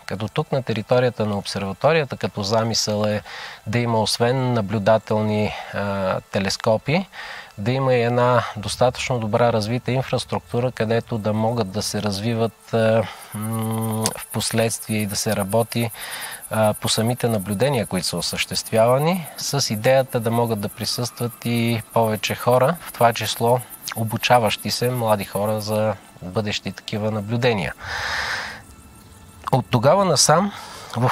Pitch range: 105-120 Hz